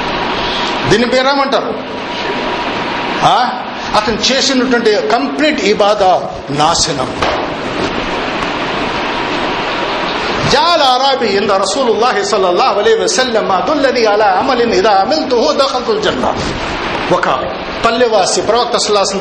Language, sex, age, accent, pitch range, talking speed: Telugu, male, 50-69, native, 205-275 Hz, 35 wpm